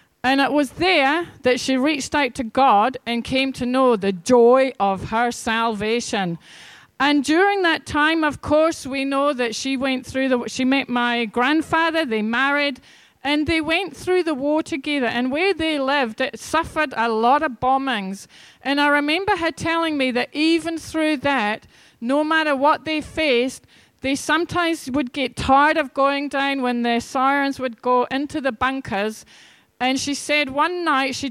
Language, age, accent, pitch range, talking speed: English, 40-59, British, 245-310 Hz, 175 wpm